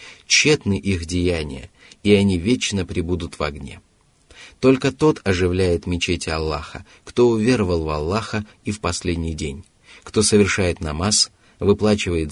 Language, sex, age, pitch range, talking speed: Russian, male, 30-49, 85-110 Hz, 125 wpm